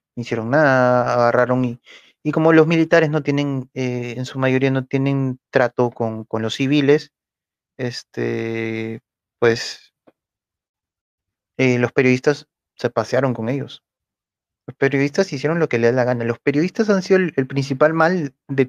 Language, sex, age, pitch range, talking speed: Spanish, male, 30-49, 110-140 Hz, 155 wpm